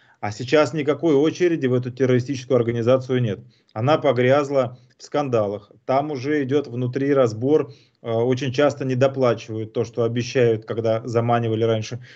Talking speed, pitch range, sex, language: 135 wpm, 115-135 Hz, male, Russian